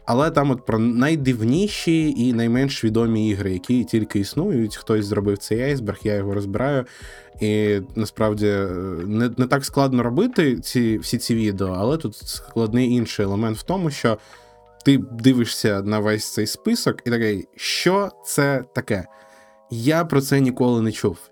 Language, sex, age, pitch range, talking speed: Ukrainian, male, 20-39, 100-130 Hz, 155 wpm